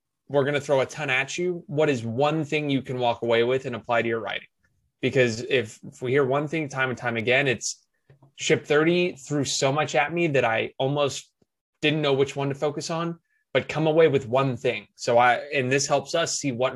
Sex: male